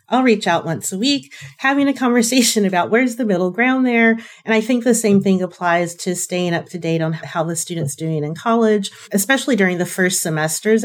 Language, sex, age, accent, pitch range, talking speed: English, female, 30-49, American, 170-210 Hz, 215 wpm